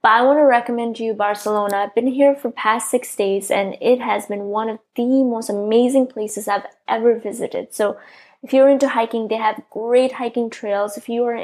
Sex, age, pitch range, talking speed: female, 10-29, 215-255 Hz, 215 wpm